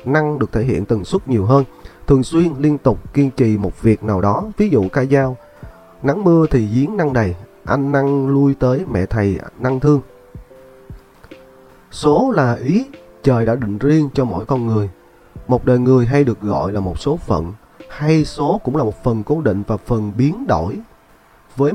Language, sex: Vietnamese, male